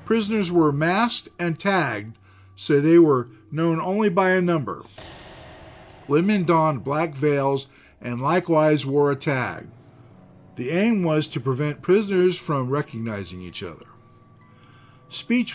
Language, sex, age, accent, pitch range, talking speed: English, male, 50-69, American, 125-170 Hz, 125 wpm